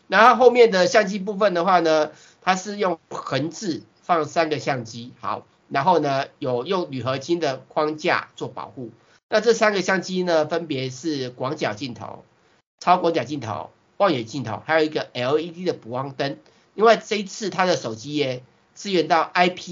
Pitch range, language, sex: 130-175 Hz, Chinese, male